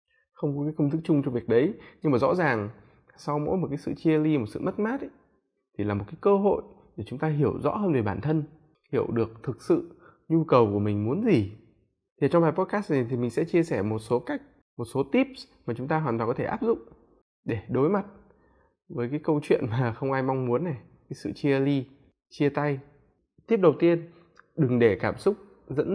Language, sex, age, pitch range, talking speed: Vietnamese, male, 20-39, 120-185 Hz, 235 wpm